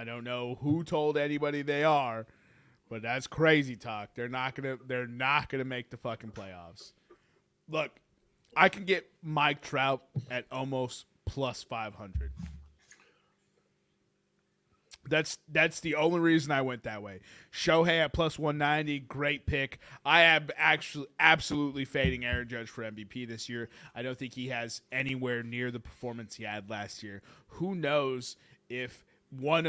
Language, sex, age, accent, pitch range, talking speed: English, male, 20-39, American, 120-155 Hz, 155 wpm